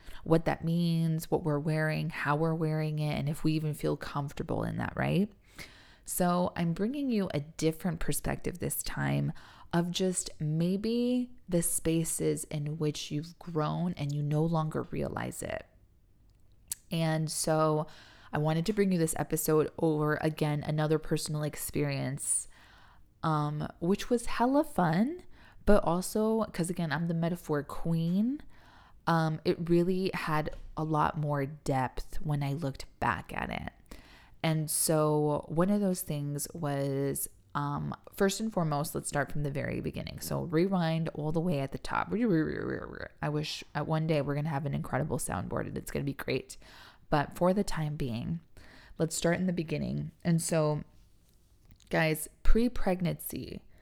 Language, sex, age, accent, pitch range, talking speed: English, female, 20-39, American, 145-170 Hz, 155 wpm